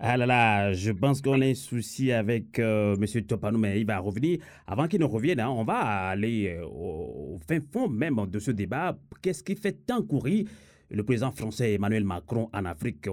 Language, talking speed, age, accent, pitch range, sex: German, 205 wpm, 30-49, French, 105-145 Hz, male